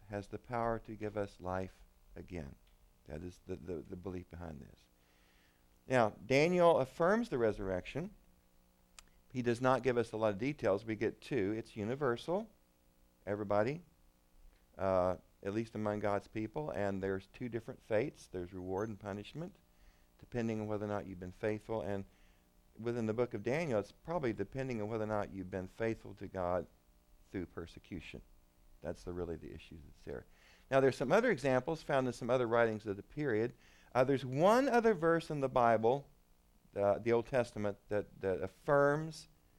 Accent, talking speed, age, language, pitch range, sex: American, 175 wpm, 50-69, English, 90-125 Hz, male